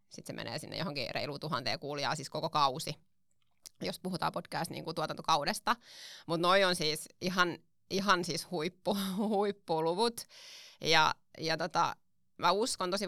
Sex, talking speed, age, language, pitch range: female, 140 wpm, 20-39, Finnish, 165-195 Hz